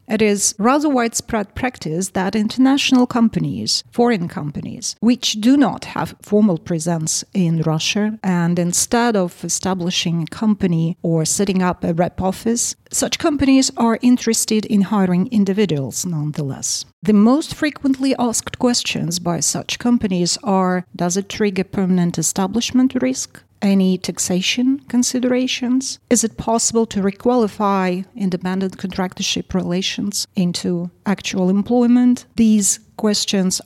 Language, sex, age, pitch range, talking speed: English, female, 40-59, 180-235 Hz, 125 wpm